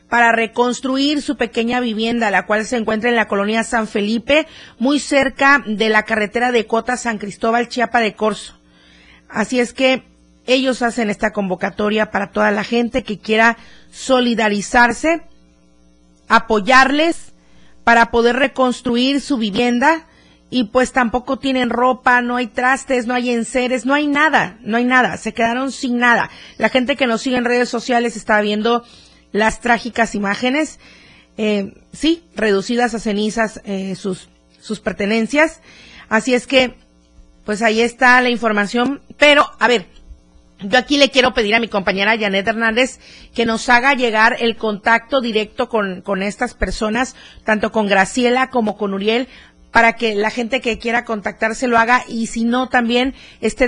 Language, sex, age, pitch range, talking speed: Spanish, female, 40-59, 210-250 Hz, 155 wpm